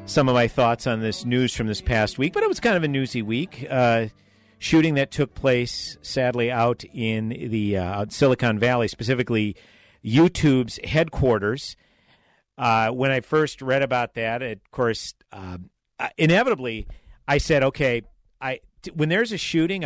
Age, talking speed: 50-69, 165 wpm